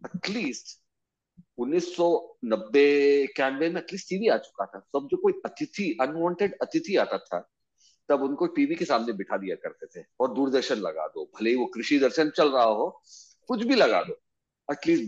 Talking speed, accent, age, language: 165 wpm, native, 40-59, Hindi